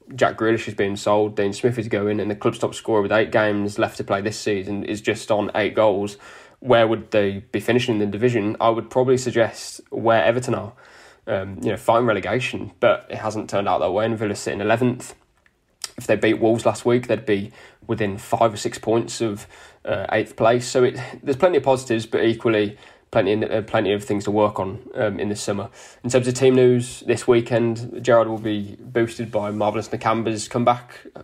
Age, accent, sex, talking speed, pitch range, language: 20-39, British, male, 210 wpm, 105-120 Hz, English